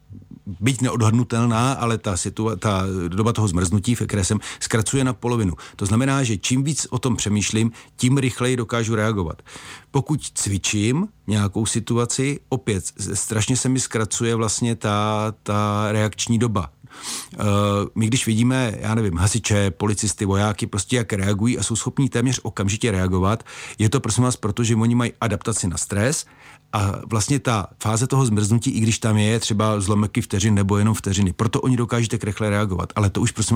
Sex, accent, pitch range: male, native, 100-120 Hz